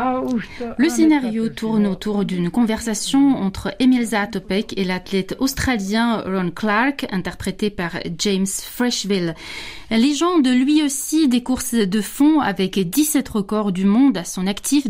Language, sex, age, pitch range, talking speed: French, female, 30-49, 180-255 Hz, 135 wpm